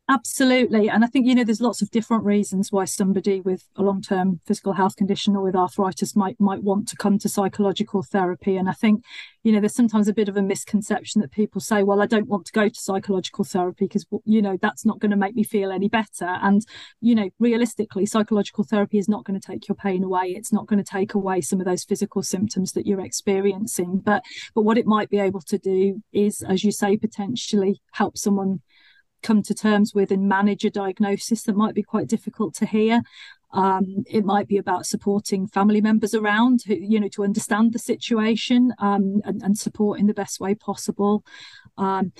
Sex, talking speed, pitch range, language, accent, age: female, 215 wpm, 195-215 Hz, English, British, 40-59